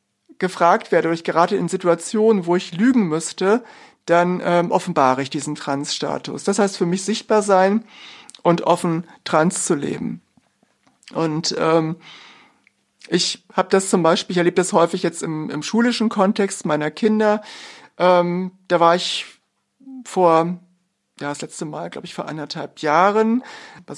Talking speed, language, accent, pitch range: 155 wpm, German, German, 165-205 Hz